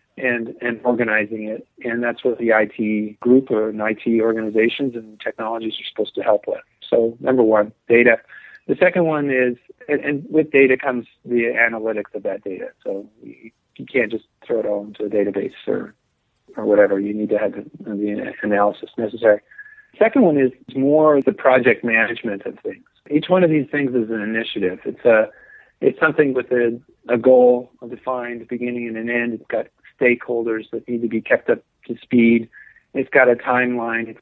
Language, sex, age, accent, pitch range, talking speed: English, male, 40-59, American, 115-125 Hz, 190 wpm